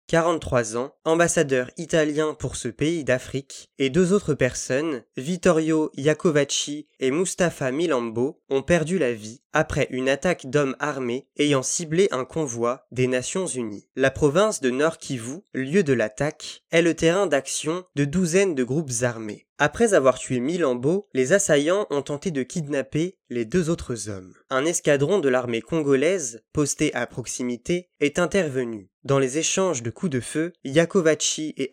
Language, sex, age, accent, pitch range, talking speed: French, male, 20-39, French, 125-165 Hz, 155 wpm